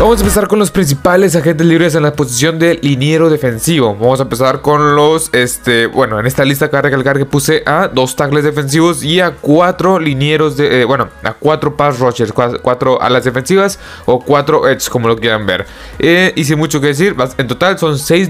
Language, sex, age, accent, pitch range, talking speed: Spanish, male, 20-39, Mexican, 135-175 Hz, 210 wpm